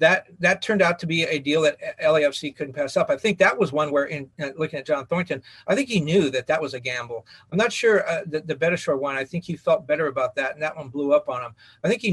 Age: 40-59